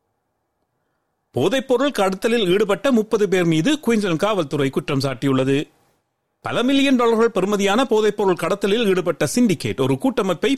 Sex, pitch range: male, 175-230 Hz